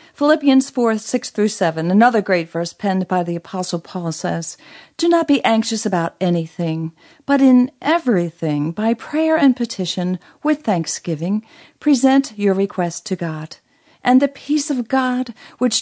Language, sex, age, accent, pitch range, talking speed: English, female, 50-69, American, 180-255 Hz, 145 wpm